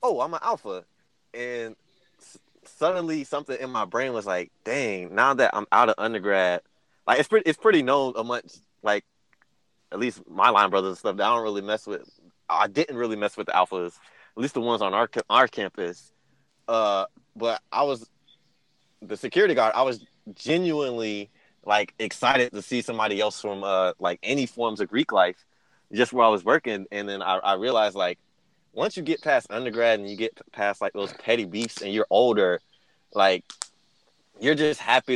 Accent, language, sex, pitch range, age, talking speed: American, English, male, 100-125 Hz, 20-39, 190 wpm